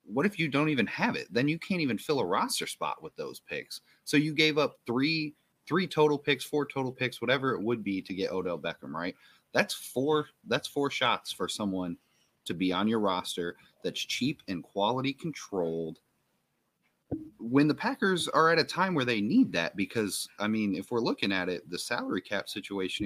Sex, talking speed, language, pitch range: male, 205 wpm, English, 100-145 Hz